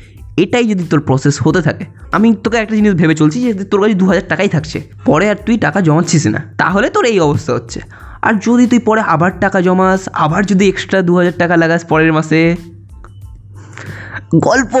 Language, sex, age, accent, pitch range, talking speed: Bengali, male, 20-39, native, 125-185 Hz, 140 wpm